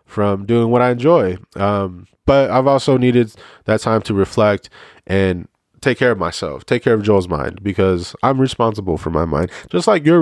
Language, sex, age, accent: English, male, 20-39, American